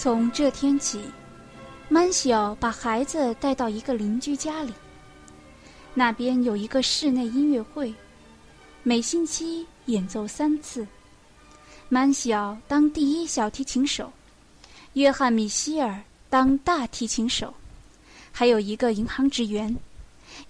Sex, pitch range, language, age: female, 225-275 Hz, Chinese, 20-39